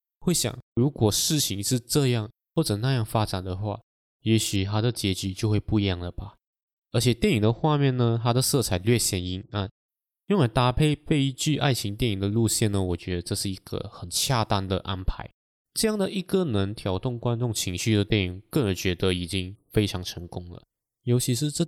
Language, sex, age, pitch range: Chinese, male, 20-39, 95-125 Hz